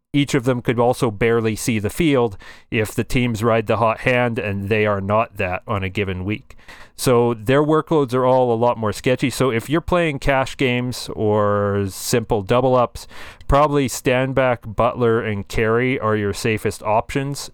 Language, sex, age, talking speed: English, male, 40-59, 180 wpm